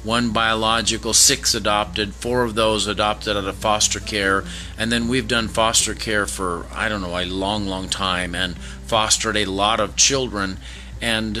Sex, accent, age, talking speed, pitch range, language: male, American, 40-59, 175 wpm, 100-120 Hz, English